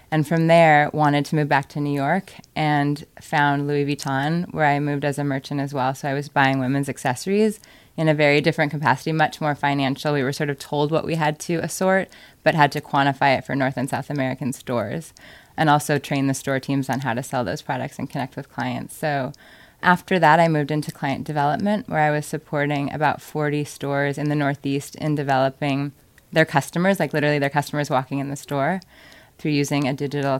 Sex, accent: female, American